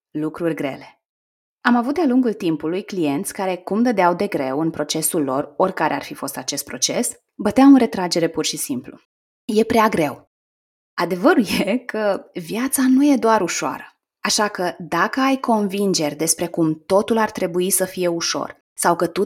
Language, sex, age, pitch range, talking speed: Romanian, female, 20-39, 175-230 Hz, 170 wpm